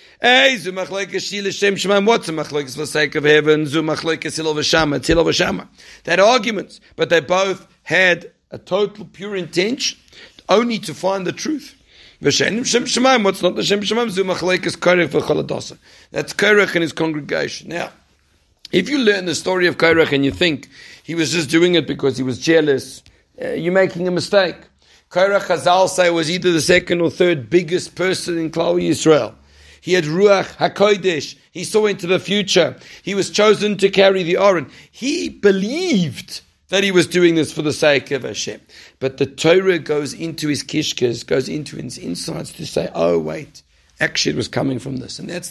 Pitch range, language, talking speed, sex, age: 150-195 Hz, English, 180 wpm, male, 60-79